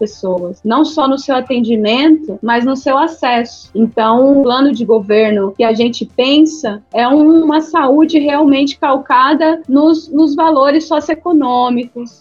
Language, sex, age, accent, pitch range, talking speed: Portuguese, female, 30-49, Brazilian, 220-265 Hz, 140 wpm